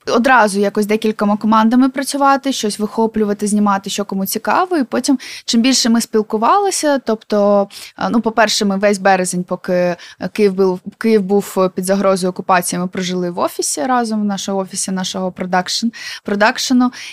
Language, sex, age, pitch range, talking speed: Ukrainian, female, 20-39, 195-235 Hz, 150 wpm